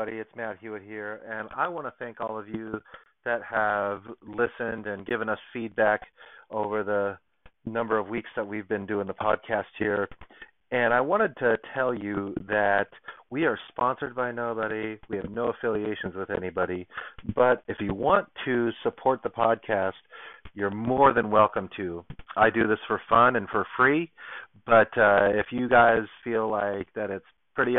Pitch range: 100-115 Hz